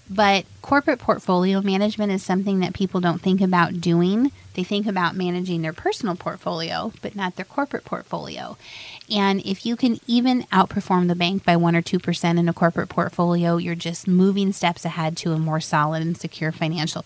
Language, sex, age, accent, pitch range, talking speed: English, female, 30-49, American, 165-195 Hz, 185 wpm